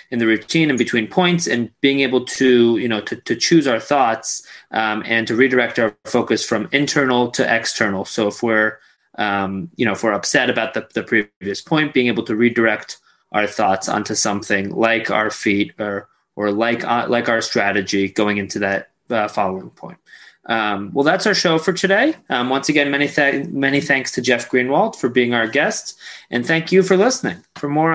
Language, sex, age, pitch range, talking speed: English, male, 20-39, 115-160 Hz, 200 wpm